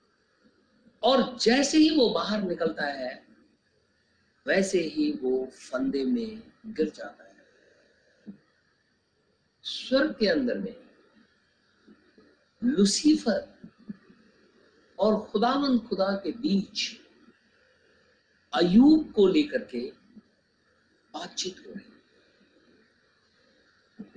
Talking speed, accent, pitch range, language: 80 wpm, native, 180-255 Hz, Hindi